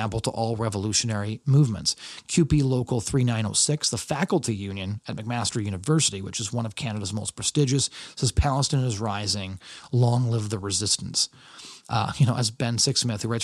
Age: 30-49